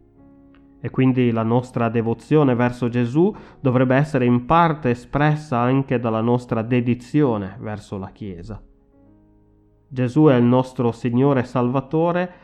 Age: 30-49